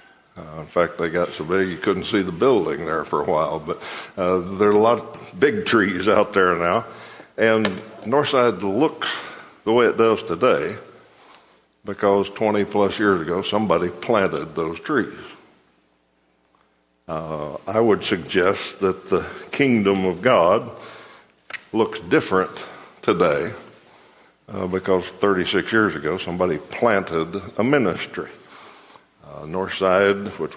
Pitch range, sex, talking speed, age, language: 90-105 Hz, male, 135 wpm, 60-79, English